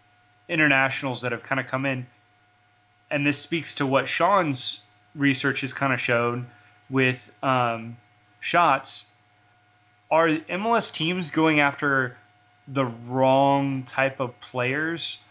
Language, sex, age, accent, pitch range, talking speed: English, male, 20-39, American, 120-145 Hz, 120 wpm